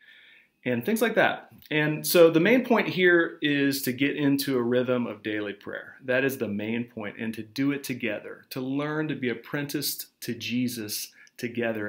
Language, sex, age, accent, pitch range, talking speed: English, male, 40-59, American, 115-140 Hz, 185 wpm